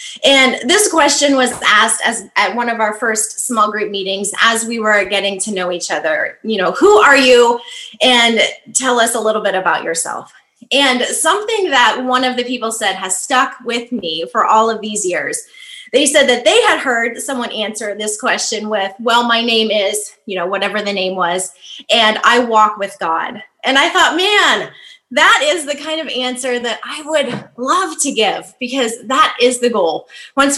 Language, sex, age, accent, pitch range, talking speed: English, female, 20-39, American, 210-270 Hz, 195 wpm